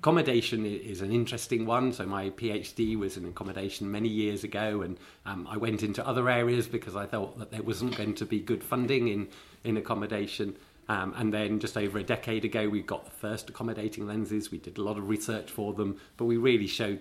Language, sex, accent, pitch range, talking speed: Swedish, male, British, 95-110 Hz, 215 wpm